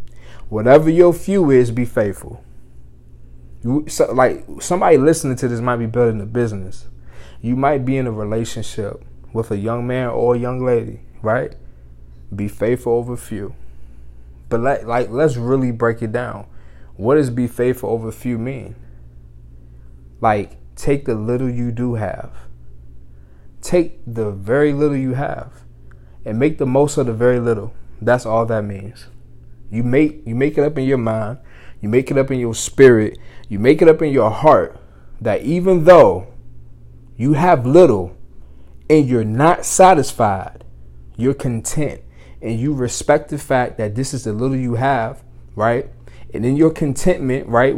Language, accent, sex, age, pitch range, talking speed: English, American, male, 20-39, 95-135 Hz, 160 wpm